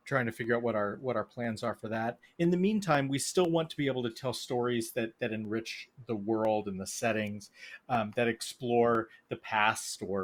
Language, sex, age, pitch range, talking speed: English, male, 30-49, 110-130 Hz, 225 wpm